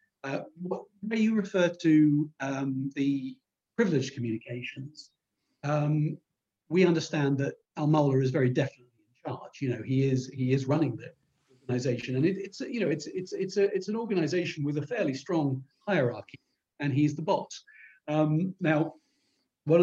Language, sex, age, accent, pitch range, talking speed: English, male, 50-69, British, 130-175 Hz, 160 wpm